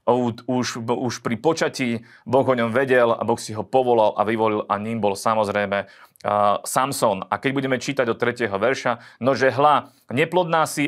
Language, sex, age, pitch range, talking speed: Slovak, male, 30-49, 105-125 Hz, 180 wpm